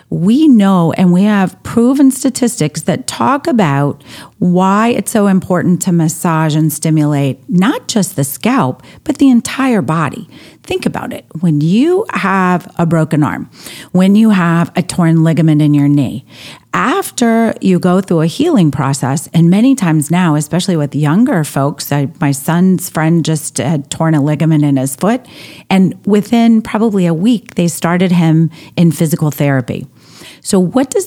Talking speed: 160 wpm